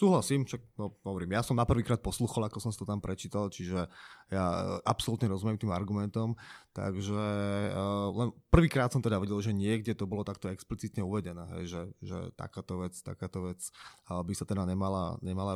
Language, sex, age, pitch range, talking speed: Slovak, male, 20-39, 100-130 Hz, 180 wpm